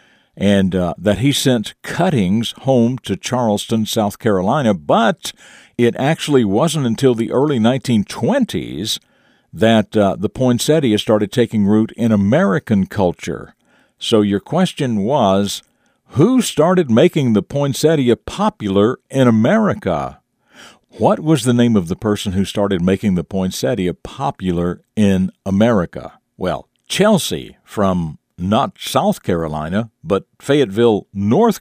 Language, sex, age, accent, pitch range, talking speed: English, male, 60-79, American, 100-130 Hz, 125 wpm